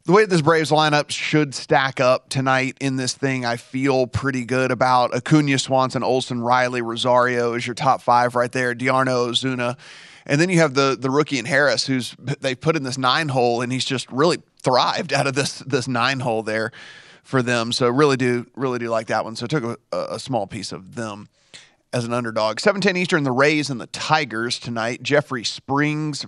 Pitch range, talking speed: 120-145 Hz, 210 wpm